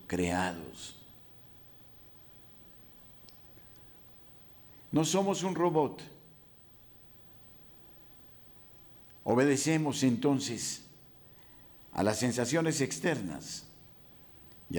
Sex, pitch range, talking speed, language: male, 95-140 Hz, 50 wpm, Spanish